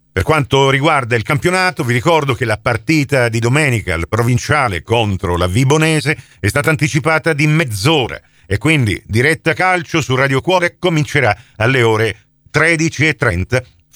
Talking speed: 140 wpm